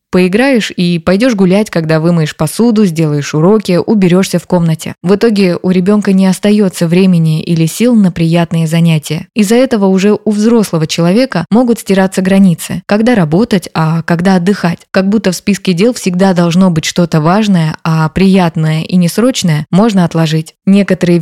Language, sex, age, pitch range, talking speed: Russian, female, 20-39, 165-200 Hz, 155 wpm